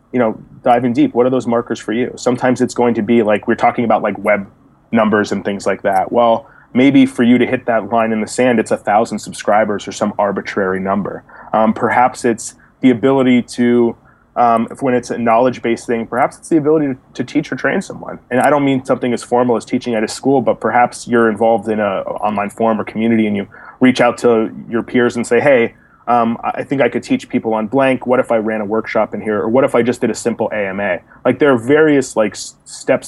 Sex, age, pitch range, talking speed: male, 30-49, 110-125 Hz, 245 wpm